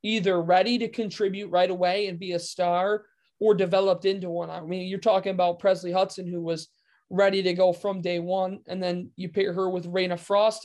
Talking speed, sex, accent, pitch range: 210 wpm, male, American, 175-195 Hz